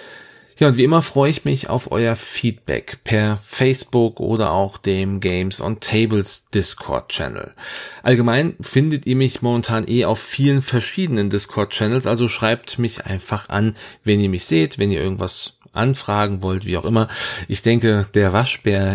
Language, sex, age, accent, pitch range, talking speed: German, male, 40-59, German, 95-120 Hz, 165 wpm